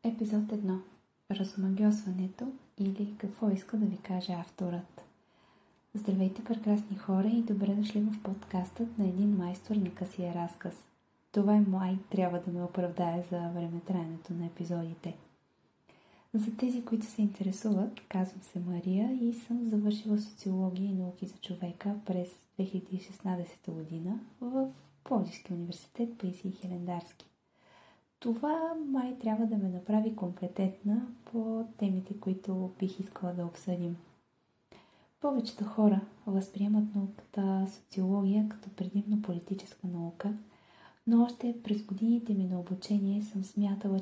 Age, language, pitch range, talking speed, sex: 20-39, Bulgarian, 185-215 Hz, 125 wpm, female